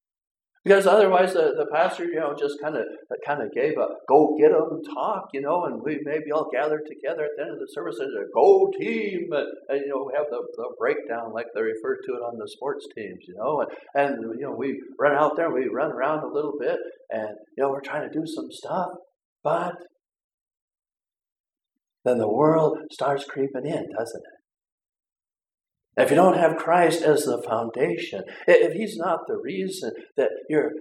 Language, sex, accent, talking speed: English, male, American, 200 wpm